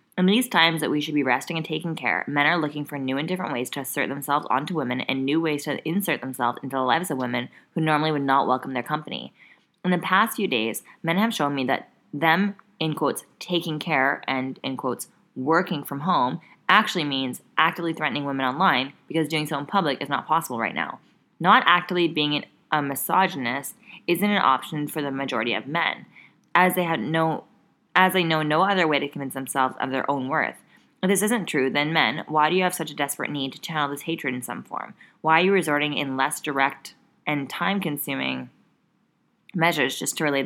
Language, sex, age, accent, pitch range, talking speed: English, female, 20-39, American, 135-165 Hz, 210 wpm